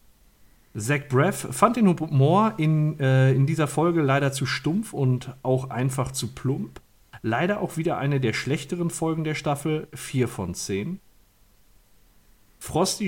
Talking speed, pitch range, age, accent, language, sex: 140 wpm, 110-155 Hz, 40-59, German, German, male